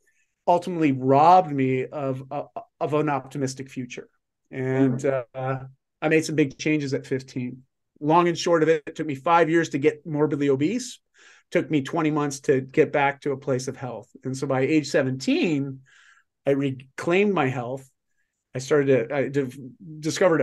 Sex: male